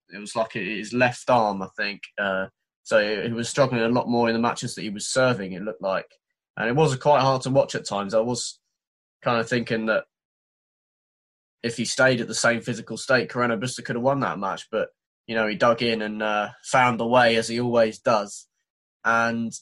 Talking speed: 220 wpm